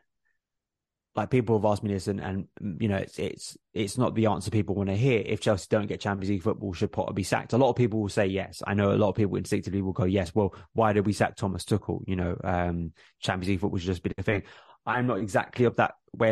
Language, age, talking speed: English, 20-39, 265 wpm